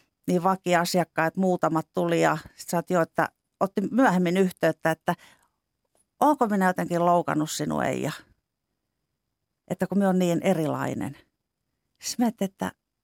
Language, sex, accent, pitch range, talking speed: Finnish, female, native, 170-200 Hz, 125 wpm